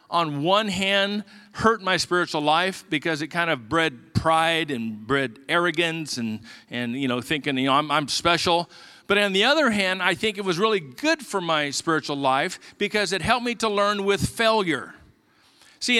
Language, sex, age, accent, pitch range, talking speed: English, male, 50-69, American, 175-240 Hz, 190 wpm